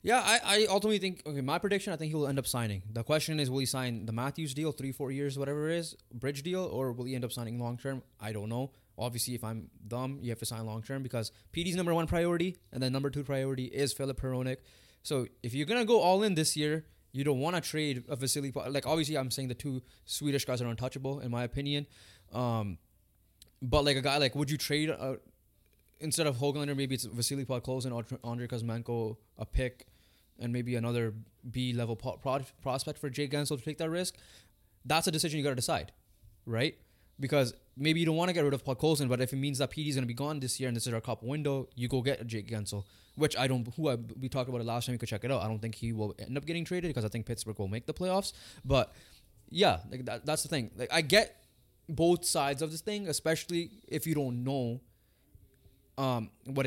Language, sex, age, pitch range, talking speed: English, male, 20-39, 120-150 Hz, 240 wpm